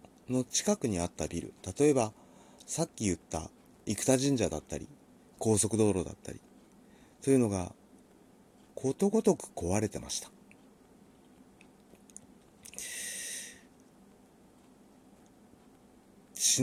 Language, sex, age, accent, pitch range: Japanese, male, 40-59, native, 95-140 Hz